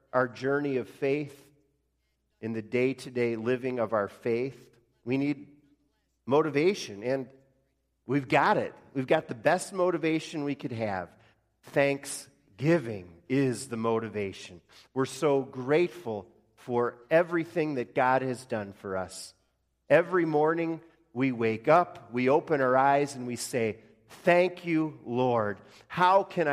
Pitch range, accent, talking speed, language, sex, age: 110-150 Hz, American, 130 wpm, English, male, 40-59